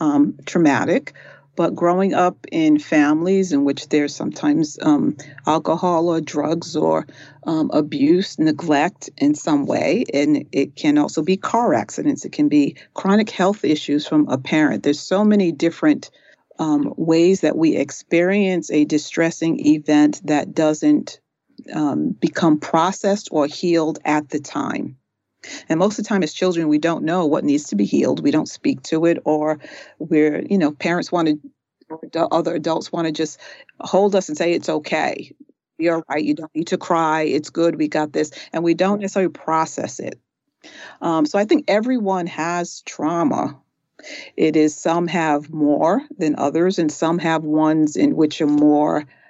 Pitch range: 150-195 Hz